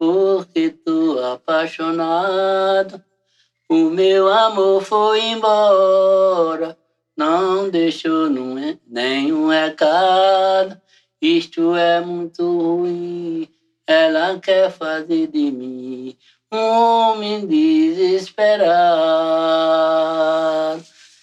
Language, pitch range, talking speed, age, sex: Portuguese, 160-225 Hz, 70 wpm, 60-79, male